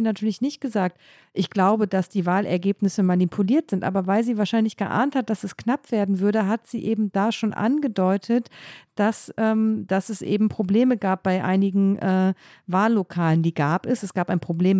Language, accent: German, German